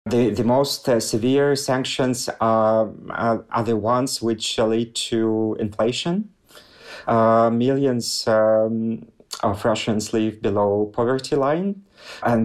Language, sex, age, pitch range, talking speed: English, male, 40-59, 110-125 Hz, 120 wpm